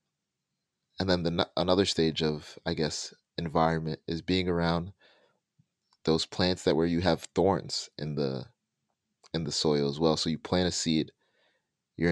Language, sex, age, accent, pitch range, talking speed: English, male, 30-49, American, 75-90 Hz, 160 wpm